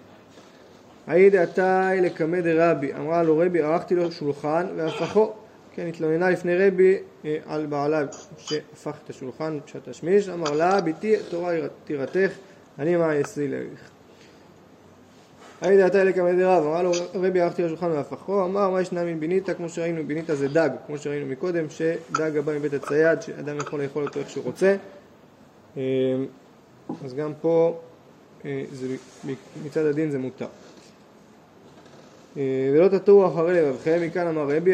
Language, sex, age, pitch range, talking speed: Hebrew, male, 20-39, 150-185 Hz, 135 wpm